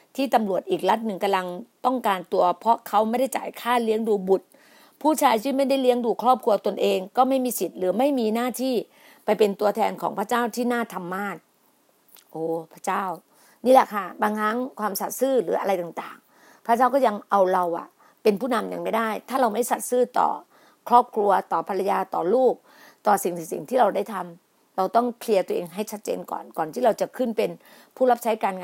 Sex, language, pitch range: female, Thai, 195-245 Hz